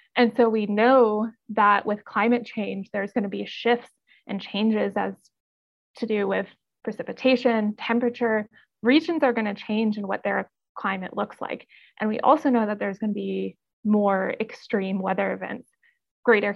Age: 20-39